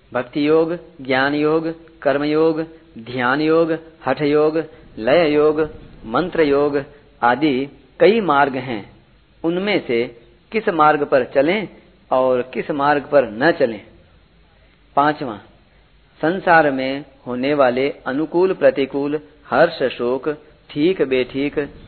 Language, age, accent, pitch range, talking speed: Hindi, 40-59, native, 135-165 Hz, 110 wpm